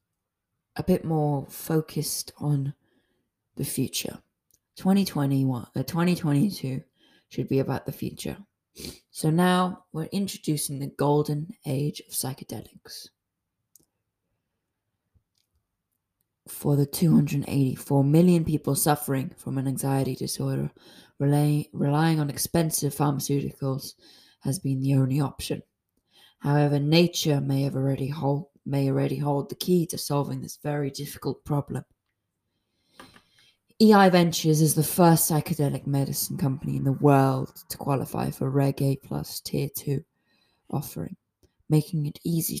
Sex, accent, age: female, British, 20-39